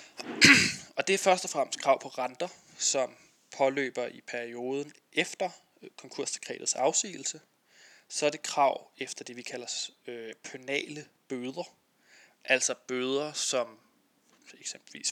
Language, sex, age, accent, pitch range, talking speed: Danish, male, 20-39, native, 125-140 Hz, 115 wpm